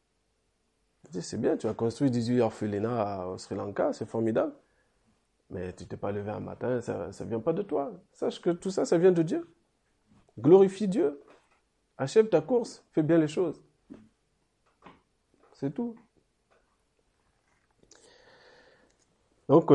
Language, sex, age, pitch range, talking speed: French, male, 40-59, 115-165 Hz, 140 wpm